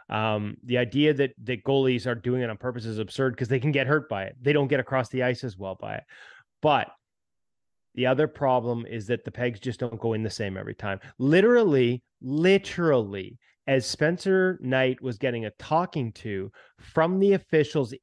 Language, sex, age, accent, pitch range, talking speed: English, male, 30-49, American, 125-175 Hz, 195 wpm